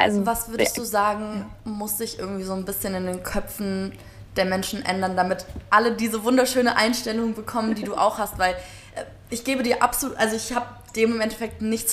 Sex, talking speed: female, 195 wpm